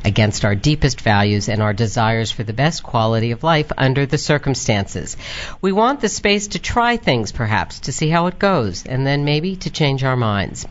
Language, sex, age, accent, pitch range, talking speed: English, female, 50-69, American, 115-165 Hz, 200 wpm